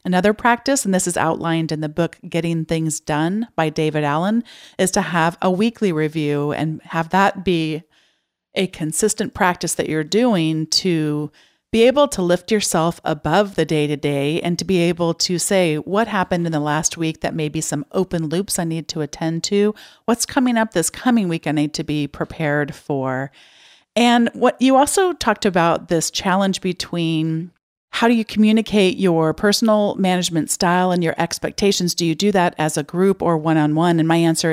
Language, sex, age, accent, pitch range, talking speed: English, female, 40-59, American, 155-195 Hz, 185 wpm